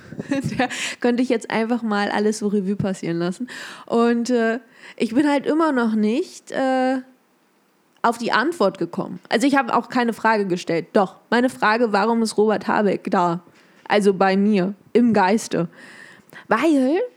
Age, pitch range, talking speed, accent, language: 20-39, 200-260 Hz, 155 wpm, German, German